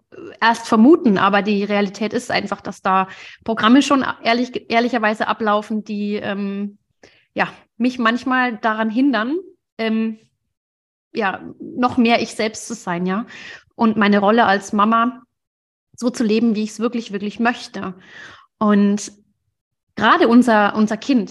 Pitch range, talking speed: 205-235 Hz, 140 wpm